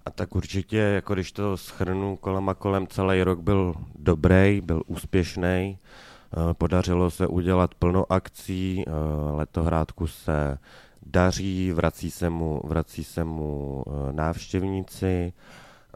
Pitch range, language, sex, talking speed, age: 85-95 Hz, Czech, male, 115 wpm, 30-49